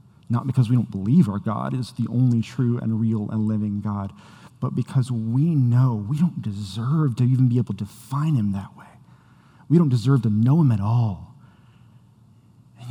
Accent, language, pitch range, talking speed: American, English, 125-160 Hz, 190 wpm